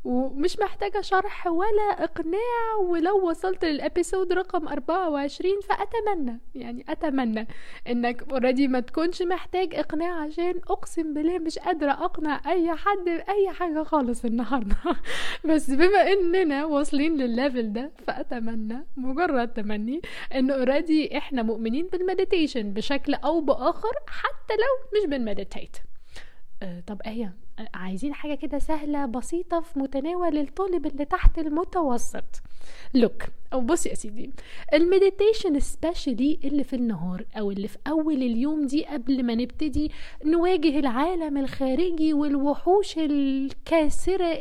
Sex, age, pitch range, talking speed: female, 10-29, 255-345 Hz, 120 wpm